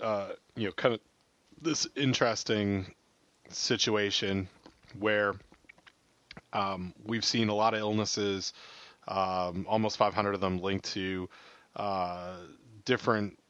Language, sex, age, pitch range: English, male, 30-49, 90-110 Hz